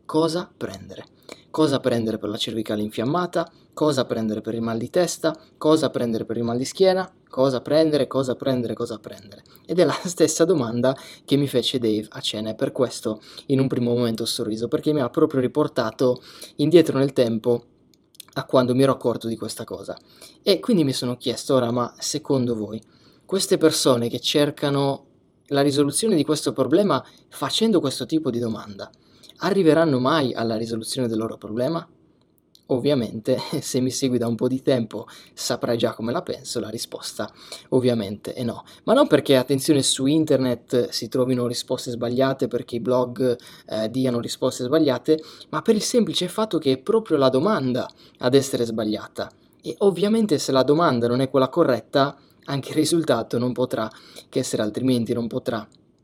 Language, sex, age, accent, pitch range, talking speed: Italian, male, 20-39, native, 120-145 Hz, 175 wpm